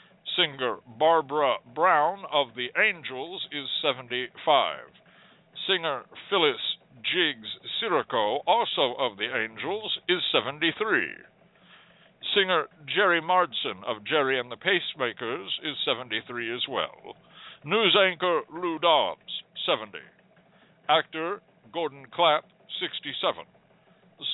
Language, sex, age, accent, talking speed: English, male, 60-79, American, 95 wpm